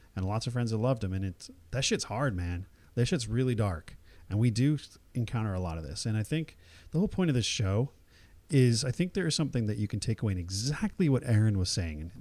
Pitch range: 90-125 Hz